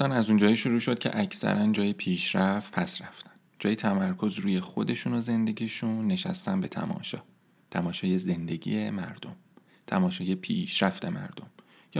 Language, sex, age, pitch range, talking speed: Persian, male, 30-49, 115-190 Hz, 135 wpm